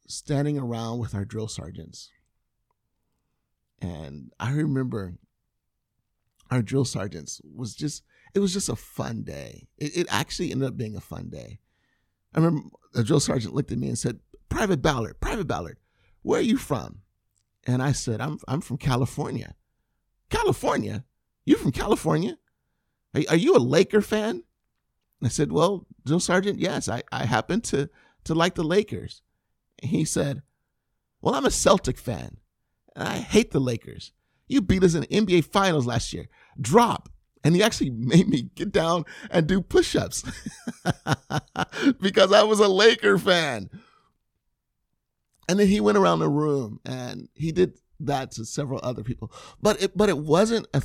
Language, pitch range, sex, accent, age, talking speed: English, 120-185 Hz, male, American, 50-69, 165 wpm